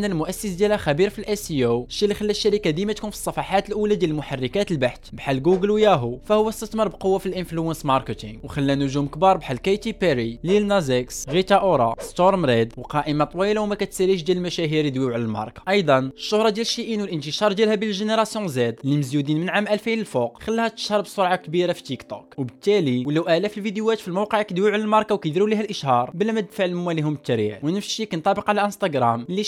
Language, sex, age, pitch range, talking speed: Arabic, male, 20-39, 145-210 Hz, 175 wpm